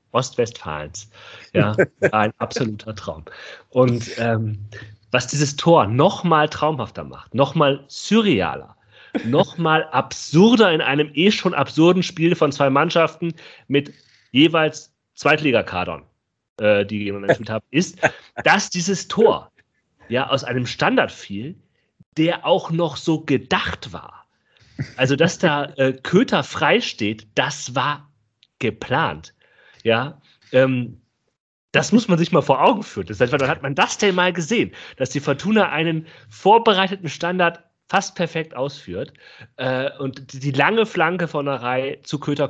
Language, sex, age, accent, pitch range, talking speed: German, male, 40-59, German, 110-160 Hz, 140 wpm